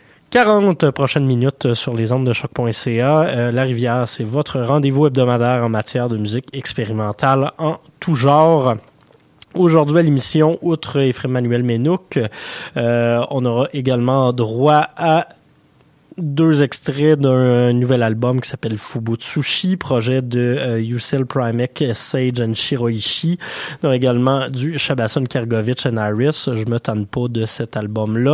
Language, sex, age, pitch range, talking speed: French, male, 20-39, 120-150 Hz, 140 wpm